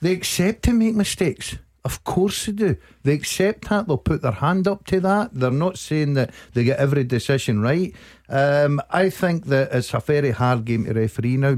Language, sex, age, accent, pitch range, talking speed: English, male, 50-69, British, 110-145 Hz, 205 wpm